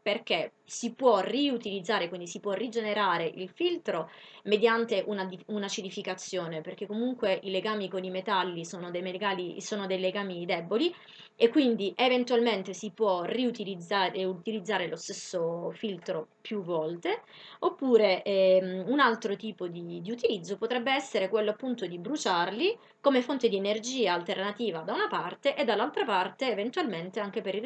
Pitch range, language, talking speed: 185-235 Hz, Italian, 145 wpm